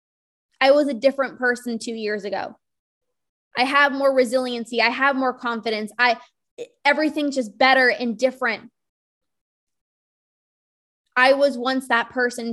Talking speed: 130 wpm